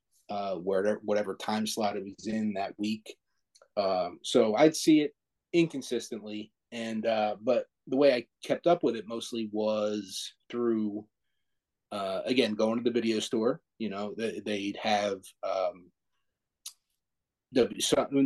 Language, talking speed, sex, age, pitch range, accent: English, 140 wpm, male, 30-49, 100-120 Hz, American